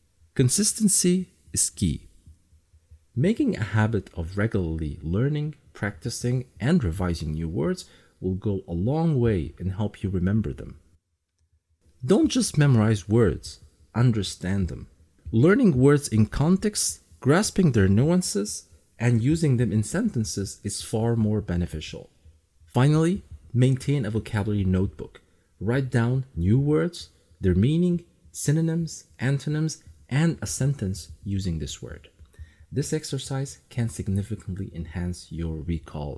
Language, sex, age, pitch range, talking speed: English, male, 40-59, 85-125 Hz, 120 wpm